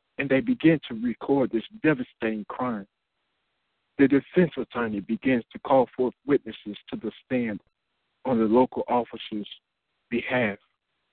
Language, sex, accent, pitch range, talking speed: English, male, American, 110-160 Hz, 130 wpm